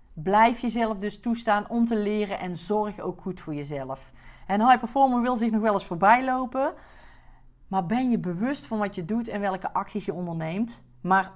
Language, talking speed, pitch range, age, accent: Dutch, 195 wpm, 175-230 Hz, 40-59, Dutch